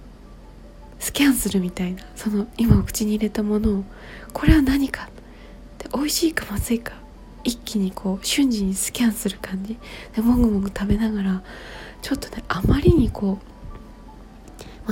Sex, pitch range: female, 205-255 Hz